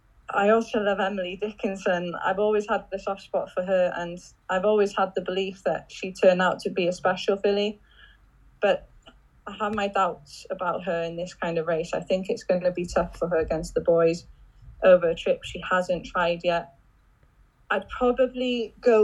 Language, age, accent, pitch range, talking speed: English, 20-39, British, 175-205 Hz, 195 wpm